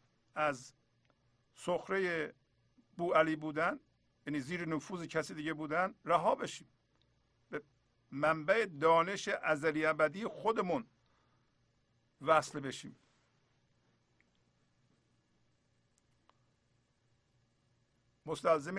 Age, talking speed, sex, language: 50-69, 70 wpm, male, Persian